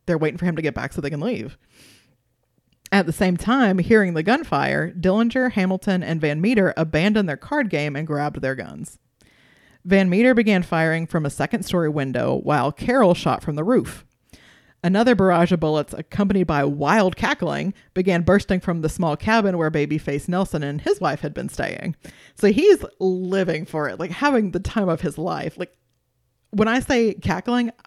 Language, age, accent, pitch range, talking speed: English, 30-49, American, 155-205 Hz, 185 wpm